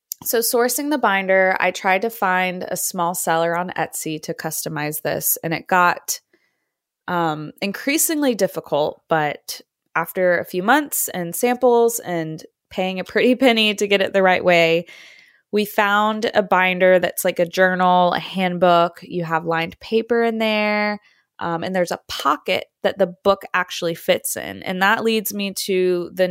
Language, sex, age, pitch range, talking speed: English, female, 20-39, 170-200 Hz, 165 wpm